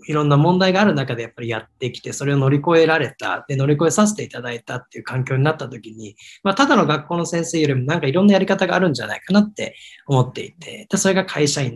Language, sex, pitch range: Japanese, male, 130-200 Hz